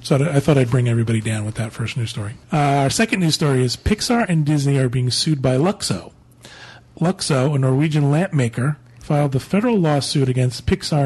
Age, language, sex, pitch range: 40-59, English, male, 125-150 Hz